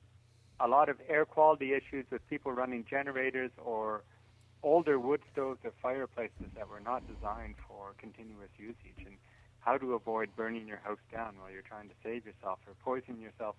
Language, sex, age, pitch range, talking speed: English, male, 40-59, 100-125 Hz, 175 wpm